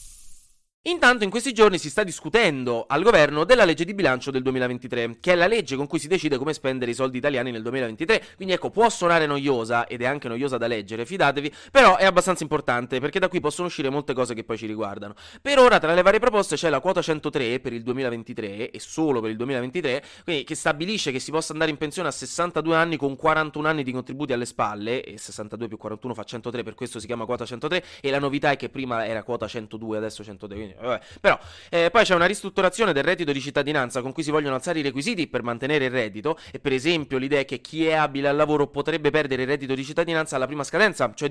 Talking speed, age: 230 wpm, 20-39